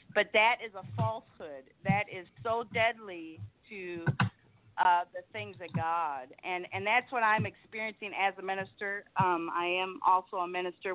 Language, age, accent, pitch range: English, 40-59, American, 170-205 Hz